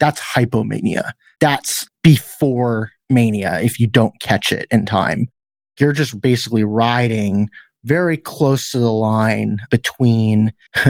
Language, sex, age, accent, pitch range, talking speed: English, male, 30-49, American, 110-135 Hz, 120 wpm